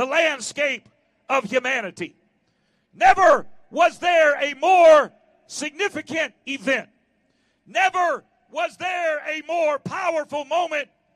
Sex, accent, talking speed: male, American, 95 wpm